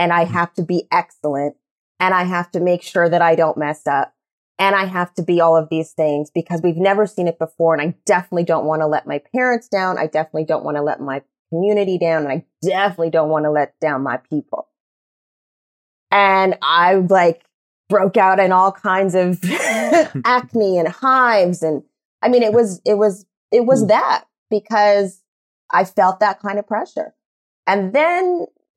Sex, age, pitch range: female, 30-49, 160-200 Hz